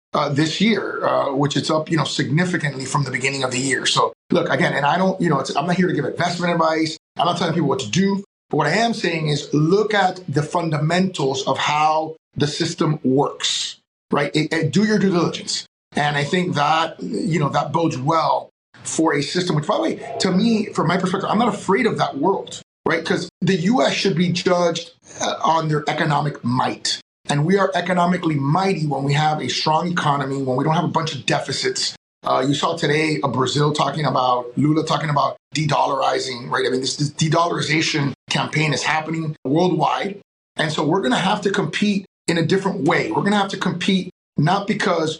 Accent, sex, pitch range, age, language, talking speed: American, male, 145-185 Hz, 30-49, English, 210 wpm